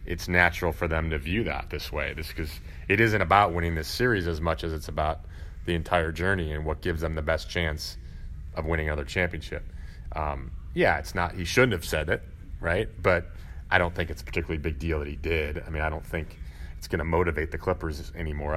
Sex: male